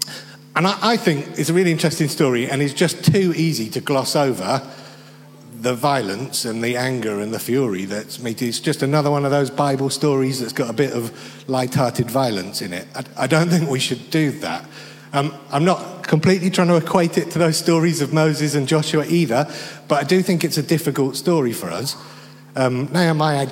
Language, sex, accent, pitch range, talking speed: English, male, British, 120-160 Hz, 200 wpm